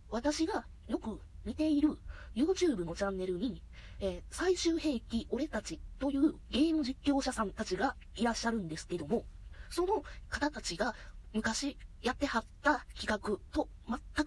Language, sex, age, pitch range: Japanese, female, 20-39, 210-310 Hz